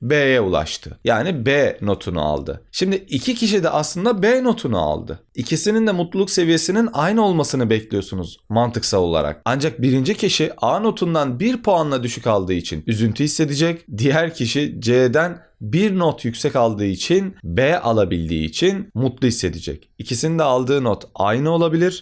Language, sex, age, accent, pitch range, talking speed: Turkish, male, 30-49, native, 120-200 Hz, 145 wpm